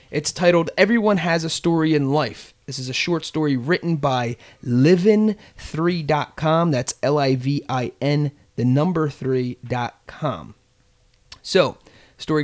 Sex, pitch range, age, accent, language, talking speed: male, 125-170 Hz, 30-49, American, English, 130 wpm